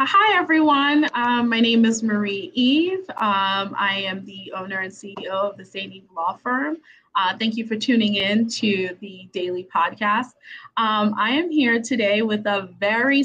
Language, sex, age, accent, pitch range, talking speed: English, female, 20-39, American, 195-240 Hz, 175 wpm